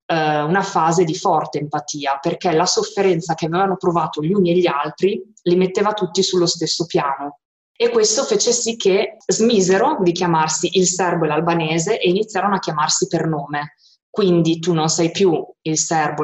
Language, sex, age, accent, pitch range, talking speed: Italian, female, 20-39, native, 155-190 Hz, 175 wpm